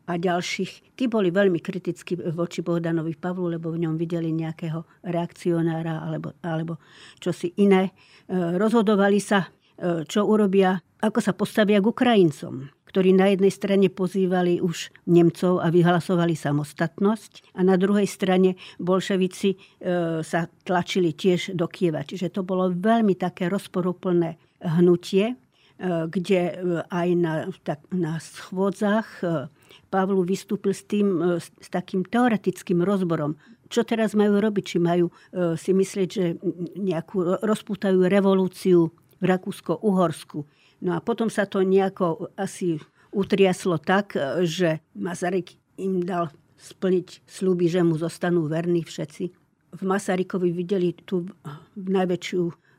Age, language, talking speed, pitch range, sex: 50-69, Slovak, 120 wpm, 170-195 Hz, female